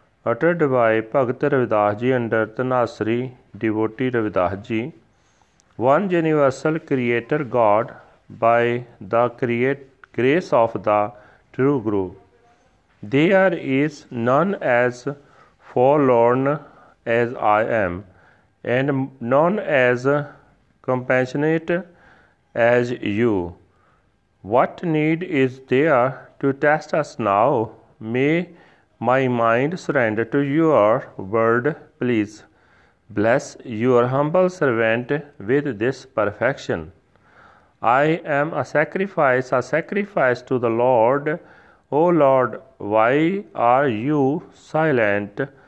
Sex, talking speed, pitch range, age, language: male, 95 wpm, 115-150 Hz, 40-59, Punjabi